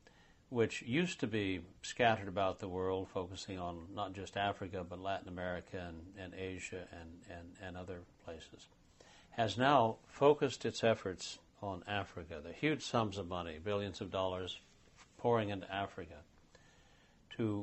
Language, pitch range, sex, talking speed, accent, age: English, 90-105 Hz, male, 145 wpm, American, 60-79